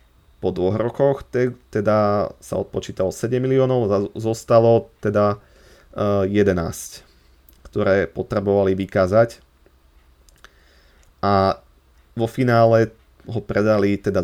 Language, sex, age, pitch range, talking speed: Slovak, male, 30-49, 95-115 Hz, 90 wpm